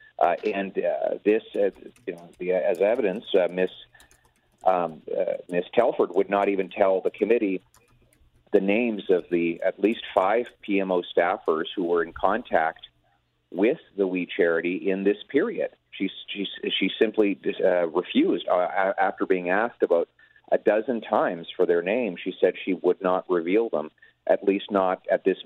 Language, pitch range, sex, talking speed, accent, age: English, 85-105 Hz, male, 165 wpm, American, 40-59